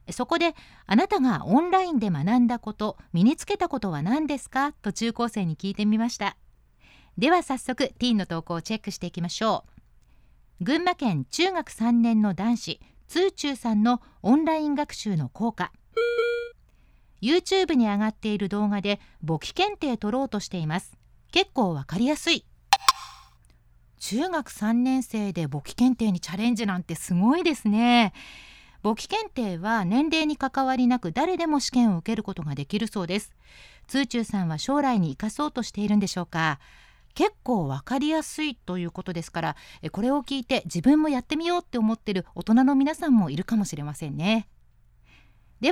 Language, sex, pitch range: Japanese, female, 200-290 Hz